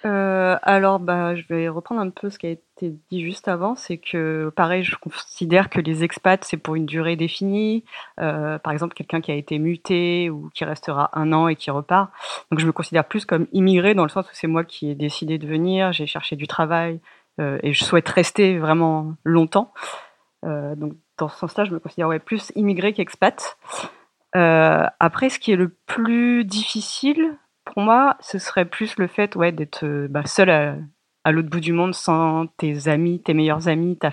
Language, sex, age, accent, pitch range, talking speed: French, female, 30-49, French, 160-195 Hz, 205 wpm